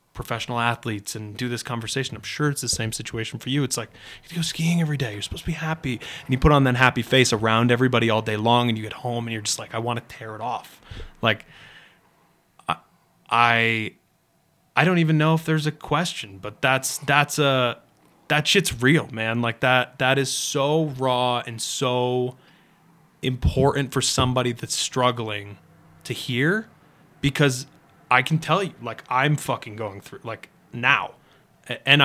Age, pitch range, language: 20-39, 120-155 Hz, English